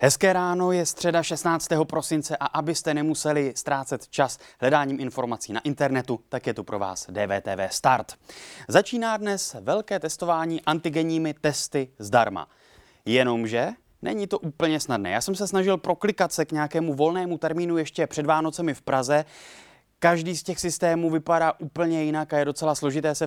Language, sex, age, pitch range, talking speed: Czech, male, 20-39, 130-170 Hz, 155 wpm